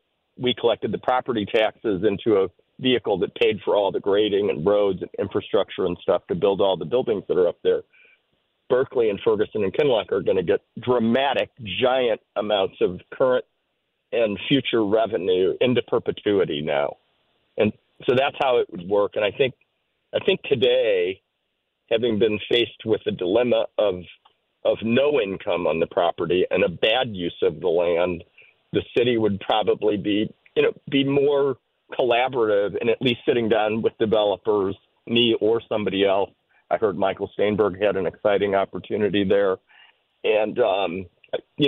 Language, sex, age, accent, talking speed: English, male, 50-69, American, 165 wpm